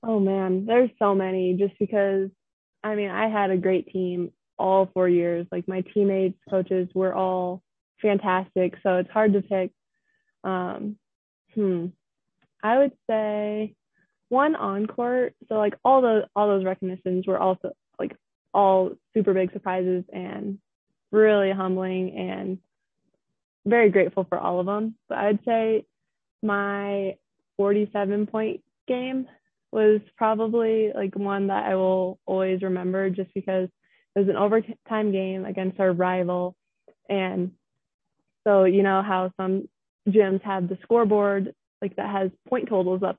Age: 20-39